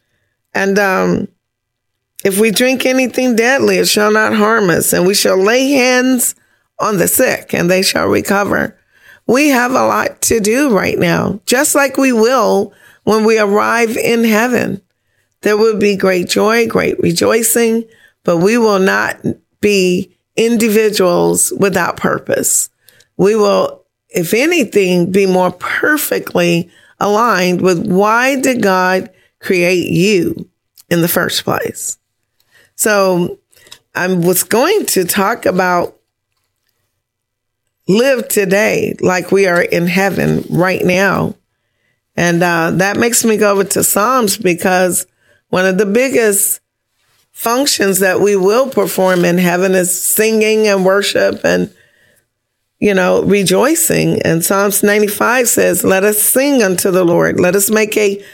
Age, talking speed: 30-49, 140 wpm